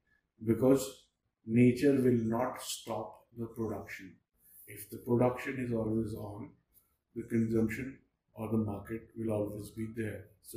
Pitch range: 105-115 Hz